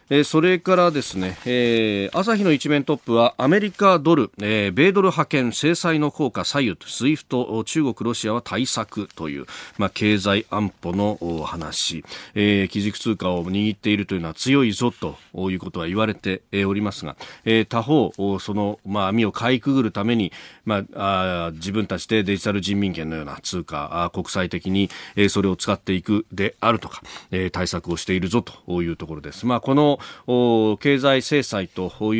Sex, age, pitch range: male, 40-59, 100-140 Hz